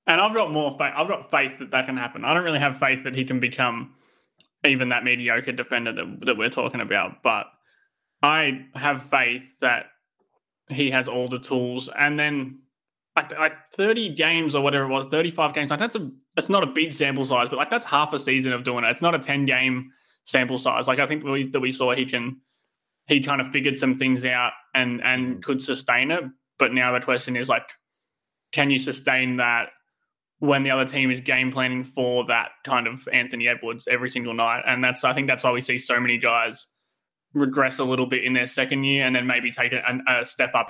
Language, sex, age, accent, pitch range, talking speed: English, male, 20-39, Australian, 125-140 Hz, 225 wpm